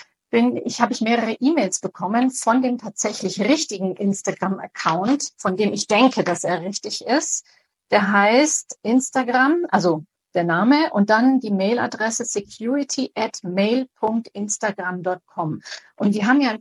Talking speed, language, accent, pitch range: 130 wpm, German, German, 200-255 Hz